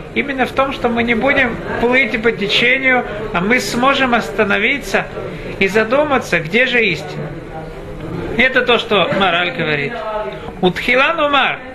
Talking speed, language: 130 wpm, Russian